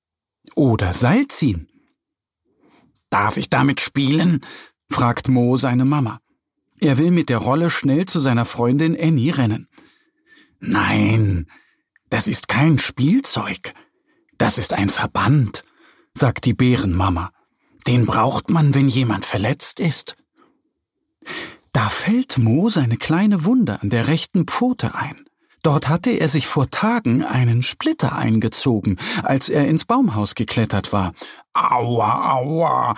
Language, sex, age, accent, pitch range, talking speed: German, male, 50-69, German, 110-160 Hz, 125 wpm